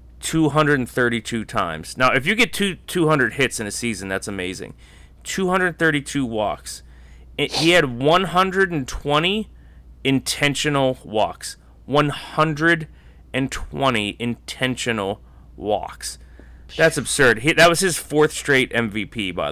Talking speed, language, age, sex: 110 wpm, English, 30-49, male